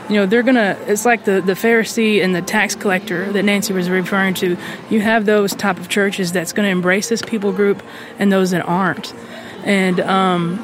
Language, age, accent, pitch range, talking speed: English, 20-39, American, 180-215 Hz, 205 wpm